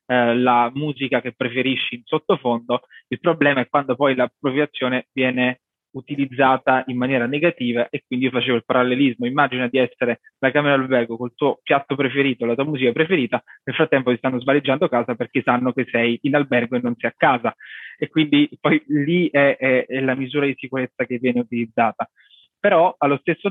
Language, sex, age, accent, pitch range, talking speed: Italian, male, 20-39, native, 125-140 Hz, 185 wpm